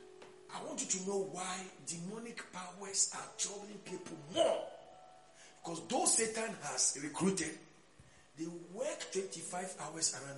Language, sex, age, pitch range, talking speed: English, male, 40-59, 140-205 Hz, 125 wpm